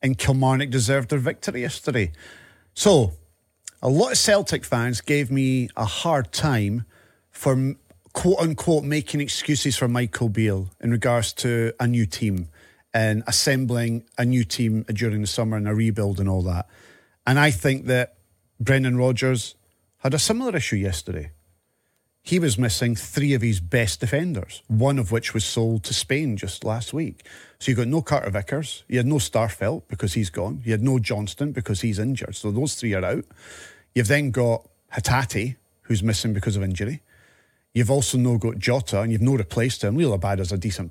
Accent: British